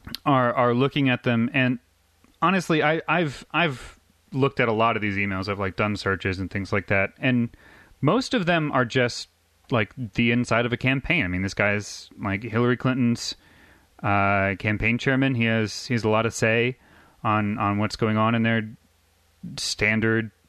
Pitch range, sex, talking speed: 95-130 Hz, male, 185 wpm